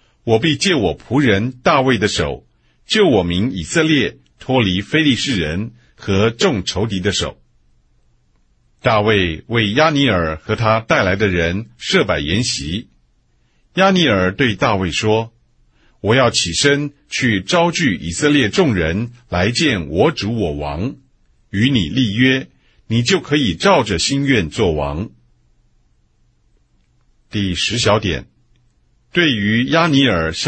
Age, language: 50-69, English